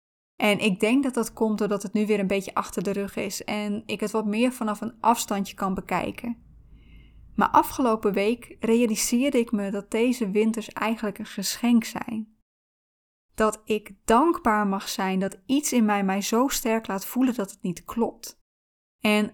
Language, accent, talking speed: Dutch, Dutch, 180 wpm